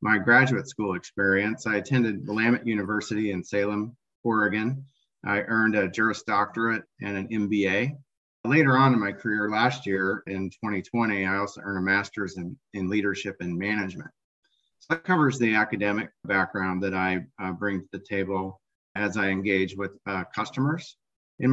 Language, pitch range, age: English, 95-115 Hz, 40-59